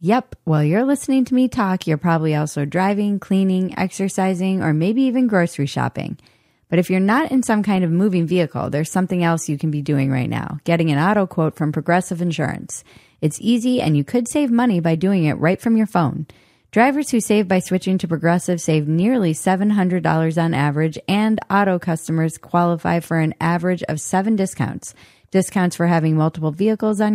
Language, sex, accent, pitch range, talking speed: English, female, American, 155-205 Hz, 190 wpm